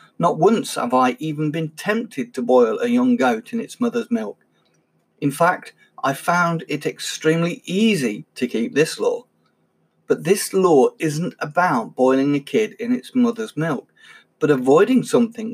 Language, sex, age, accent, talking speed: English, male, 50-69, British, 160 wpm